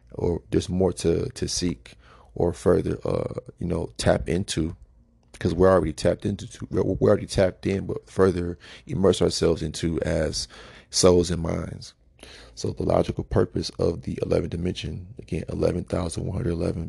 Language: English